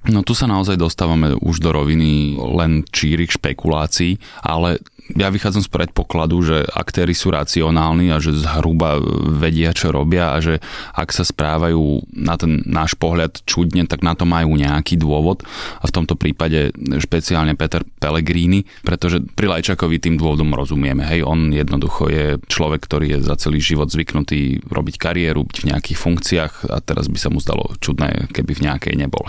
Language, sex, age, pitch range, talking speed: Slovak, male, 30-49, 75-85 Hz, 170 wpm